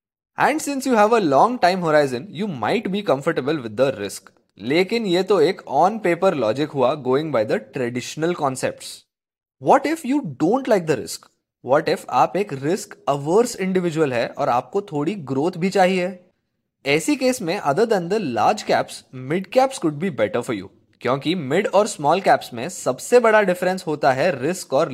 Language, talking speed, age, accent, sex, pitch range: Hindi, 180 wpm, 20-39, native, male, 140-195 Hz